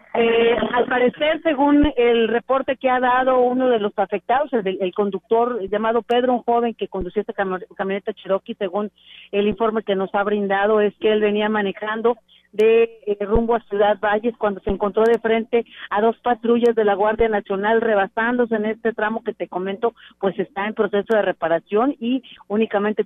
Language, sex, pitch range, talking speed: Spanish, female, 210-240 Hz, 185 wpm